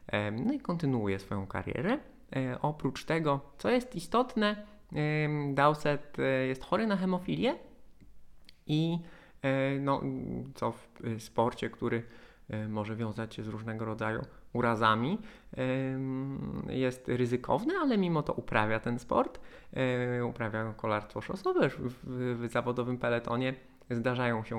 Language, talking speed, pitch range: Polish, 105 wpm, 115-145 Hz